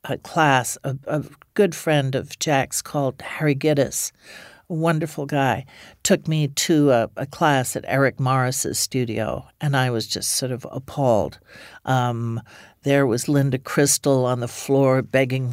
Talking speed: 155 wpm